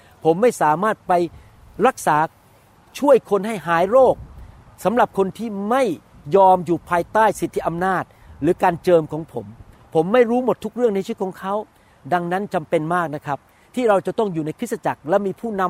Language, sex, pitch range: Thai, male, 150-205 Hz